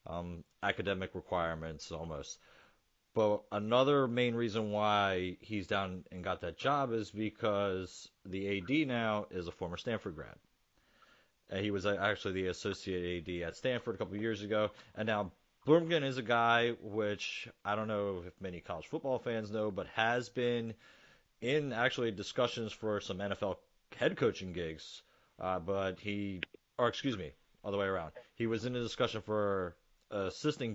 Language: English